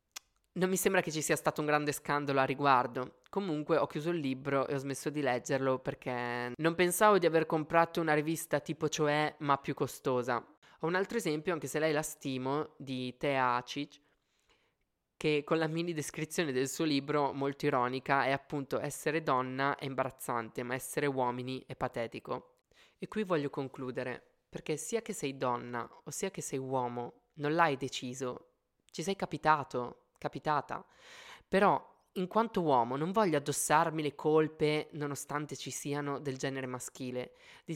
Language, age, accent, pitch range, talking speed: Italian, 20-39, native, 135-160 Hz, 165 wpm